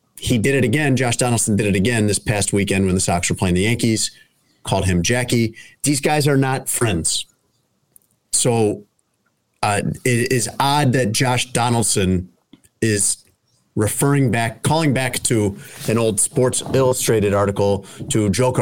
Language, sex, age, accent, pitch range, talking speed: English, male, 30-49, American, 100-130 Hz, 155 wpm